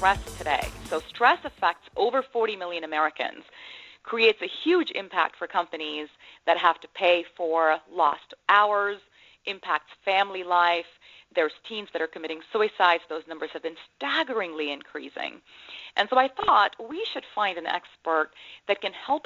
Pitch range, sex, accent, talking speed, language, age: 155-210 Hz, female, American, 150 wpm, English, 40-59